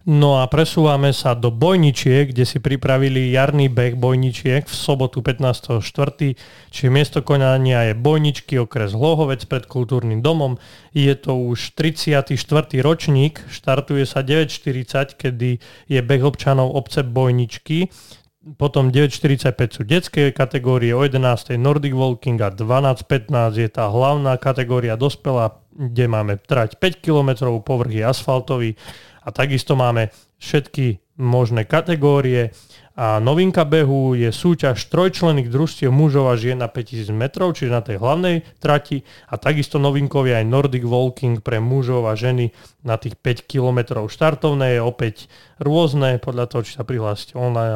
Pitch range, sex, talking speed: 120-145 Hz, male, 140 wpm